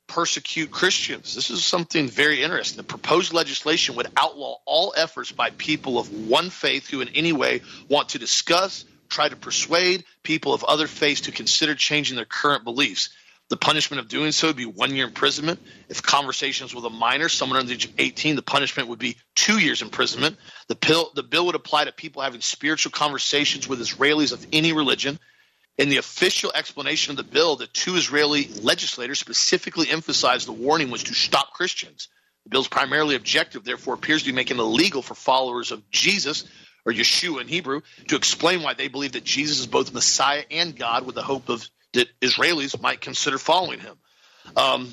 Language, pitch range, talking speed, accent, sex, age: English, 125-160 Hz, 190 wpm, American, male, 40-59